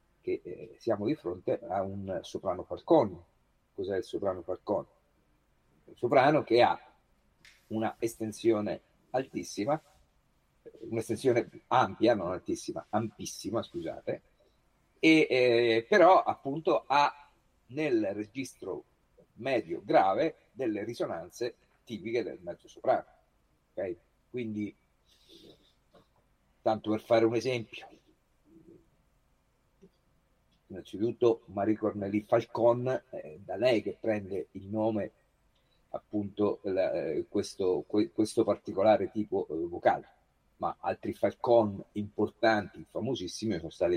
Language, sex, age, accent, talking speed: Italian, male, 50-69, native, 100 wpm